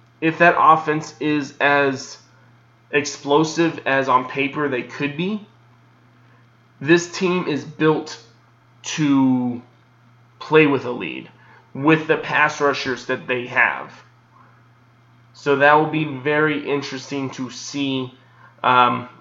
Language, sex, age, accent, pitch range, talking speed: English, male, 20-39, American, 125-150 Hz, 115 wpm